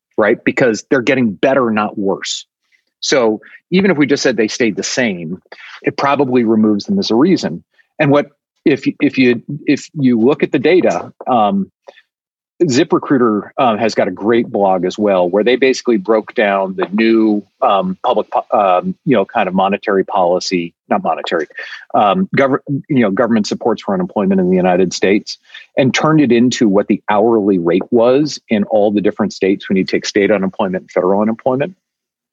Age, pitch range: 40-59, 100-140 Hz